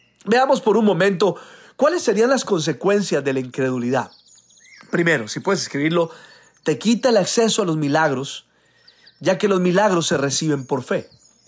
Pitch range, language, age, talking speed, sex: 150-220 Hz, Spanish, 40-59, 155 wpm, male